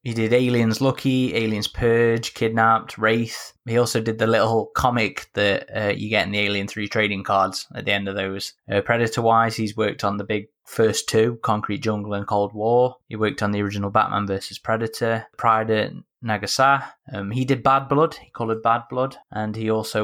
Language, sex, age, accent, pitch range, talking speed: English, male, 20-39, British, 105-130 Hz, 200 wpm